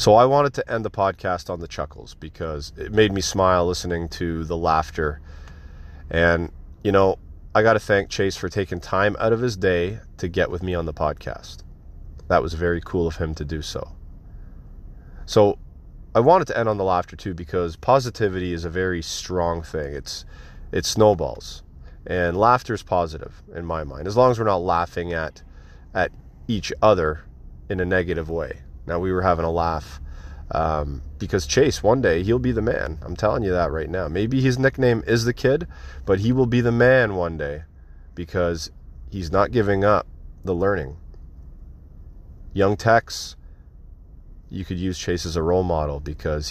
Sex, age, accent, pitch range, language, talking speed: male, 30-49, American, 75-95 Hz, English, 185 wpm